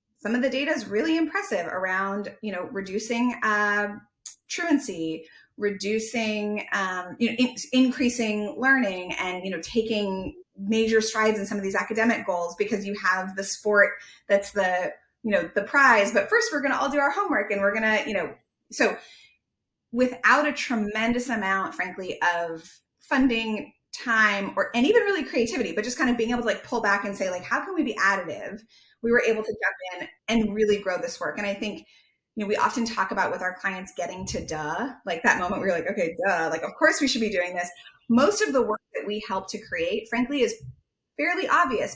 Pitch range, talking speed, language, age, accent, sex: 200-250 Hz, 200 wpm, English, 30-49, American, female